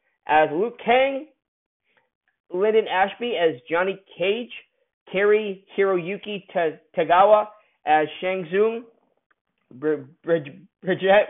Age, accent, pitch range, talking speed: 40-59, American, 165-220 Hz, 80 wpm